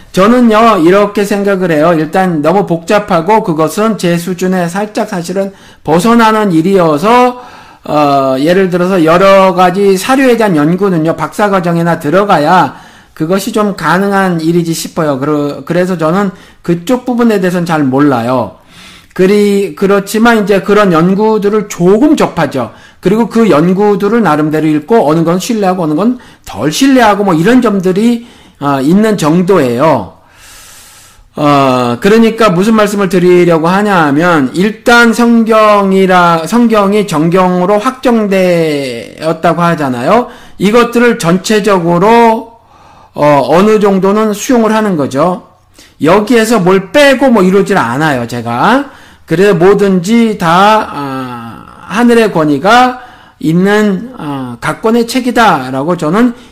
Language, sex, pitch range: Korean, male, 165-220 Hz